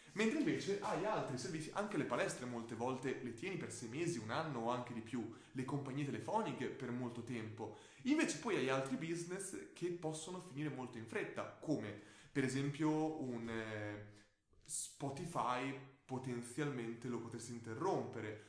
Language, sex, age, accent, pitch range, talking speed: Italian, male, 20-39, native, 115-150 Hz, 155 wpm